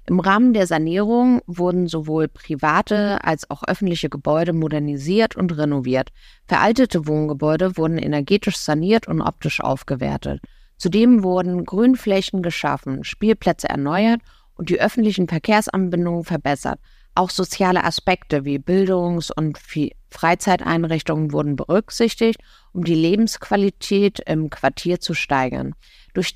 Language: German